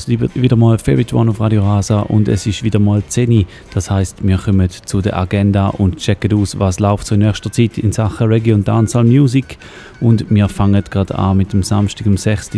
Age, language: 30-49, German